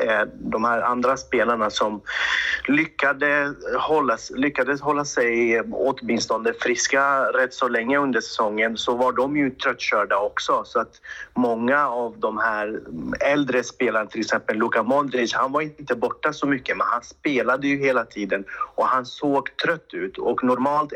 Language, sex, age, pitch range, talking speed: Swedish, male, 30-49, 120-145 Hz, 155 wpm